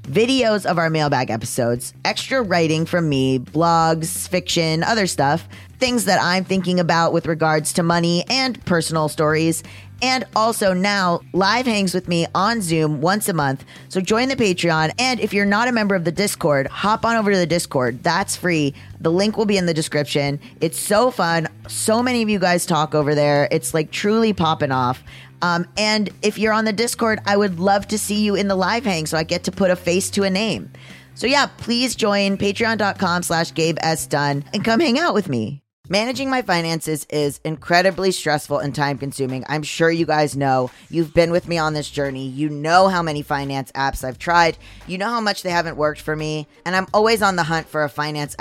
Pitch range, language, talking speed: 145-200 Hz, English, 210 wpm